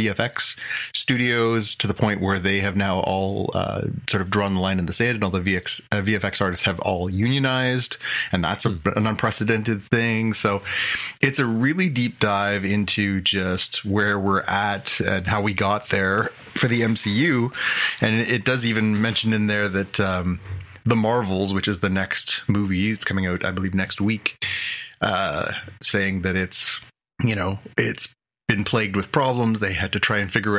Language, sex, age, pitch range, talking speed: English, male, 30-49, 95-110 Hz, 185 wpm